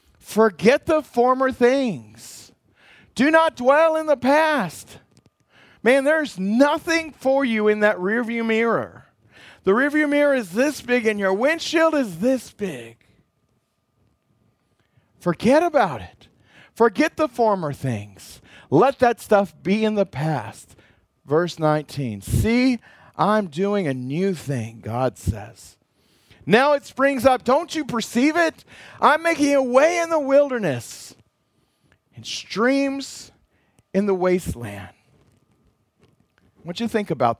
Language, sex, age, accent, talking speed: English, male, 40-59, American, 125 wpm